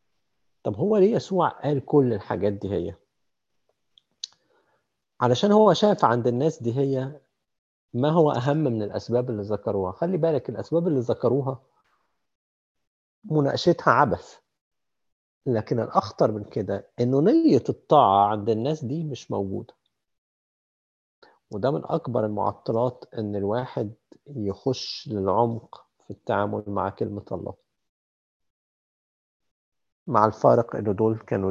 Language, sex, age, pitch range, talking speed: Arabic, male, 50-69, 105-145 Hz, 115 wpm